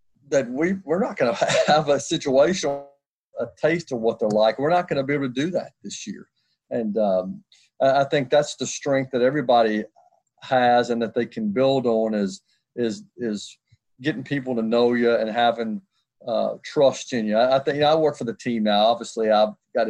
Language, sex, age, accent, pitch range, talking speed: English, male, 50-69, American, 115-140 Hz, 210 wpm